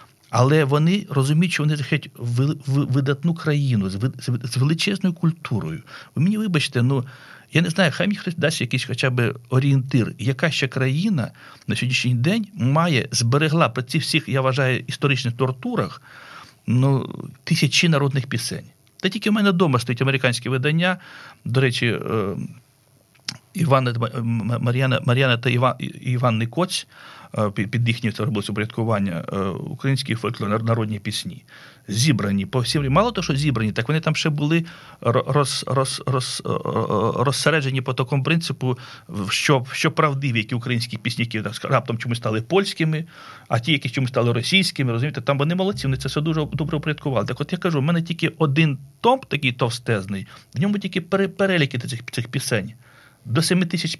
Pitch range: 120-160 Hz